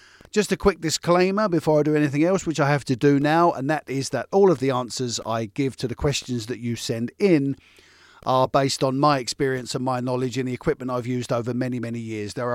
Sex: male